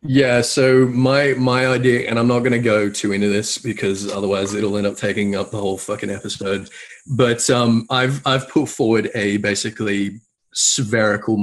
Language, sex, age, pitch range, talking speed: English, male, 30-49, 105-125 Hz, 180 wpm